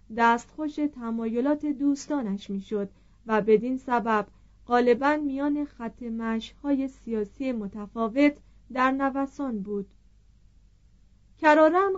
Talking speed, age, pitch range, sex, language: 85 wpm, 40-59, 210-290 Hz, female, Persian